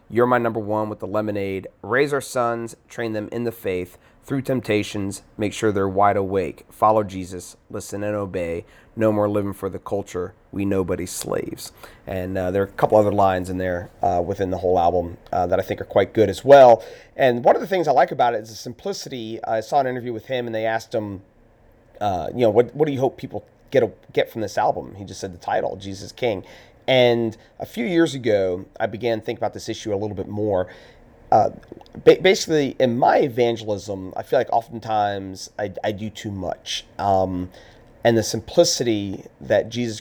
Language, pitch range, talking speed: English, 100-120 Hz, 210 wpm